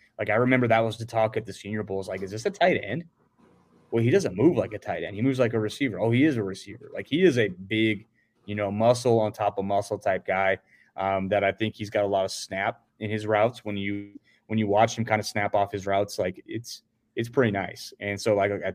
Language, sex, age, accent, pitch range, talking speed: English, male, 20-39, American, 100-115 Hz, 265 wpm